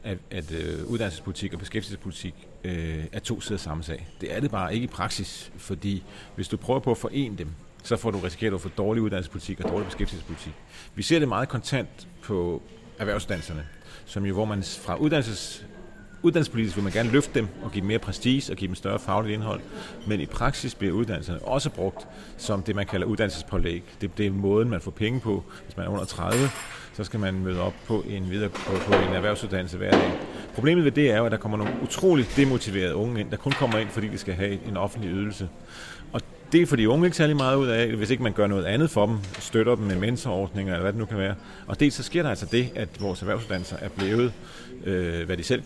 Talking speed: 220 wpm